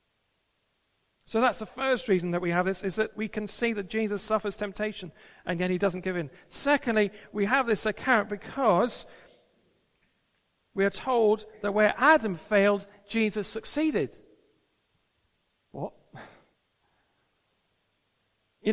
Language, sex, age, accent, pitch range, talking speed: English, male, 40-59, British, 155-215 Hz, 130 wpm